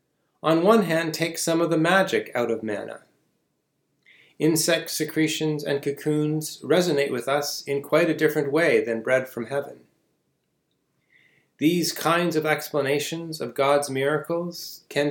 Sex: male